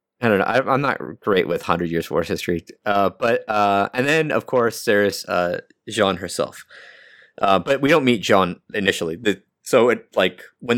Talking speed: 195 wpm